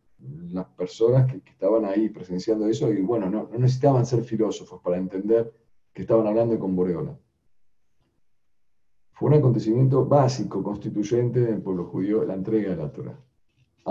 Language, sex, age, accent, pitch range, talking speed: Spanish, male, 50-69, Argentinian, 100-145 Hz, 150 wpm